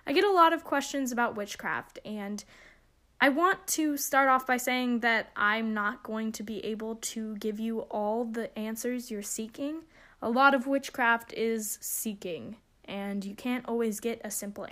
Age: 10-29